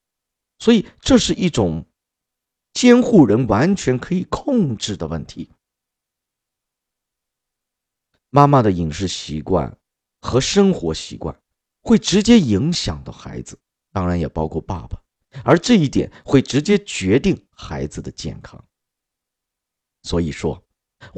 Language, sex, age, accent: Chinese, male, 50-69, native